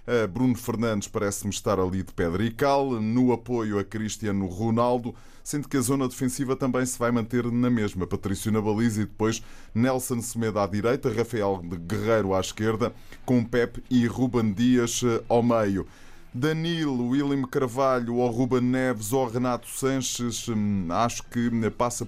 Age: 20-39